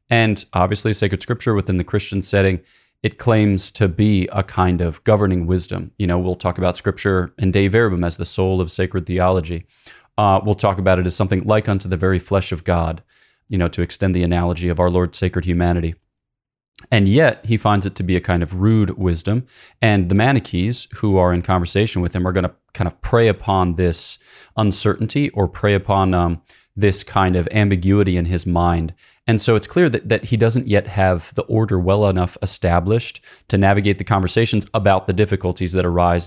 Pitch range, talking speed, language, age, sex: 90-105 Hz, 200 wpm, English, 30-49, male